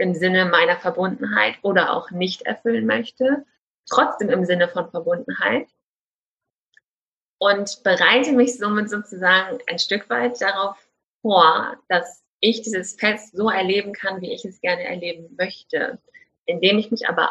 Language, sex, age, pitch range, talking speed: German, female, 30-49, 180-240 Hz, 140 wpm